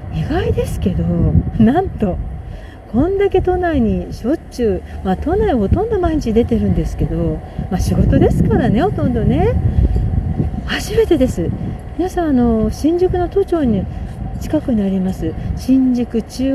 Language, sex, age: Japanese, female, 40-59